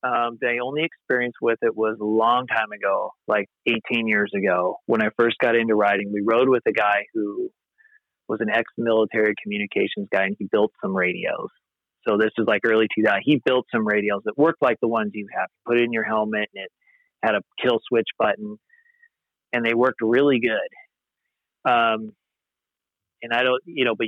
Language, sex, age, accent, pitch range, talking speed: English, male, 30-49, American, 110-150 Hz, 195 wpm